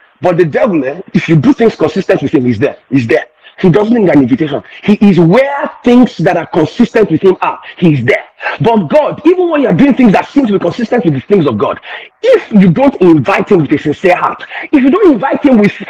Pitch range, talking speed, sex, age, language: 185-290 Hz, 240 wpm, male, 40-59, English